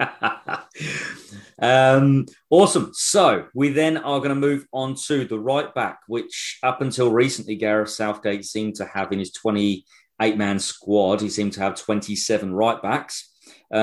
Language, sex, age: English, male, 40-59